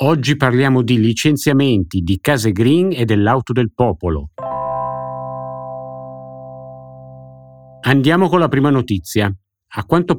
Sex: male